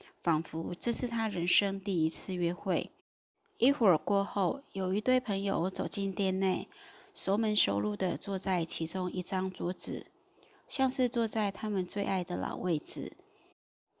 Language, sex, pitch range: Chinese, female, 180-225 Hz